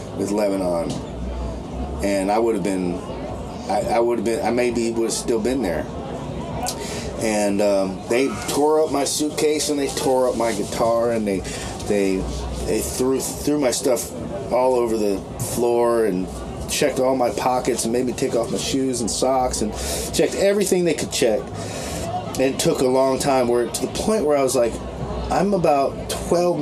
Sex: male